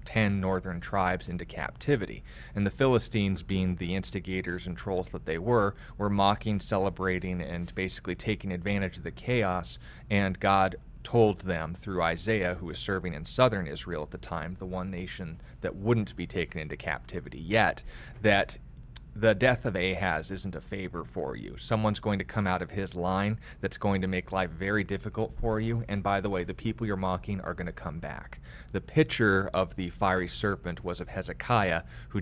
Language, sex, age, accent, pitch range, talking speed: English, male, 30-49, American, 90-105 Hz, 190 wpm